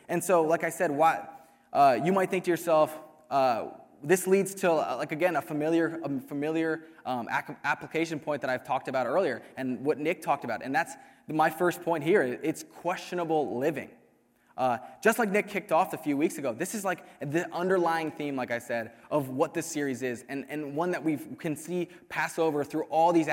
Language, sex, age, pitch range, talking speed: English, male, 20-39, 145-175 Hz, 205 wpm